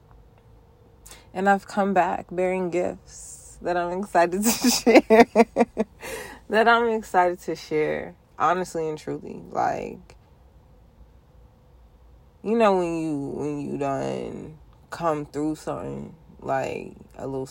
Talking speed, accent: 115 wpm, American